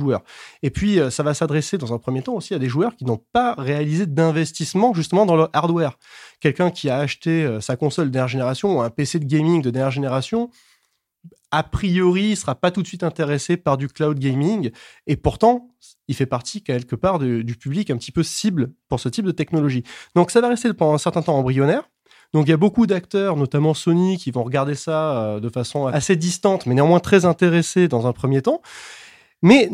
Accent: French